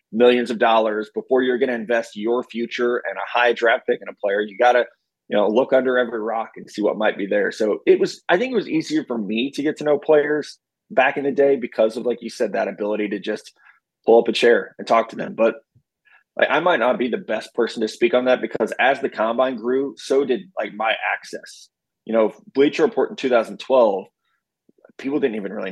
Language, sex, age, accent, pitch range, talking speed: English, male, 20-39, American, 105-135 Hz, 240 wpm